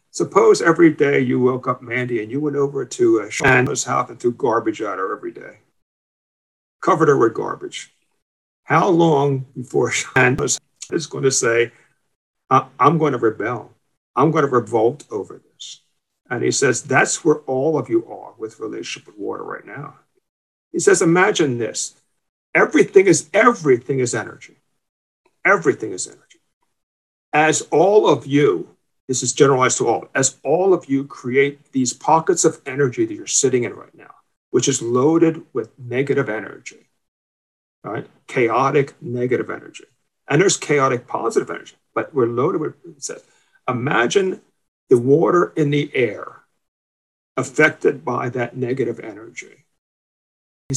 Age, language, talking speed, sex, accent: 50-69, English, 150 wpm, male, American